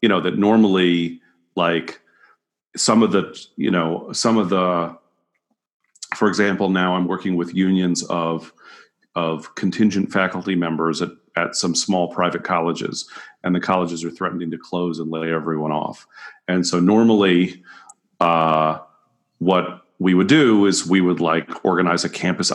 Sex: male